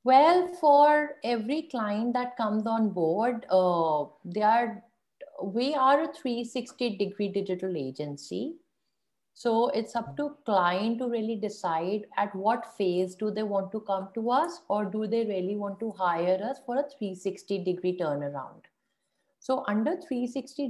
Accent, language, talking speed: Indian, English, 145 wpm